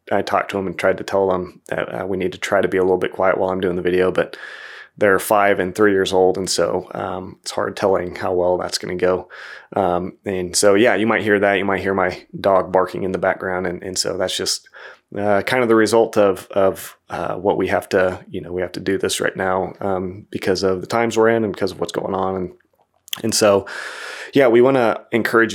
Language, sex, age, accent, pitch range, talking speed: English, male, 20-39, American, 95-105 Hz, 255 wpm